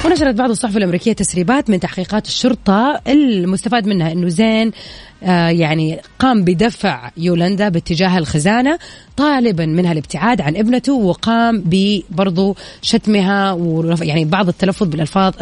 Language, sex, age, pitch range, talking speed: Arabic, female, 30-49, 175-230 Hz, 120 wpm